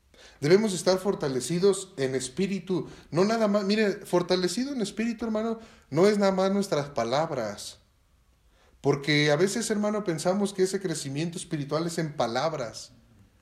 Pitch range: 135-190 Hz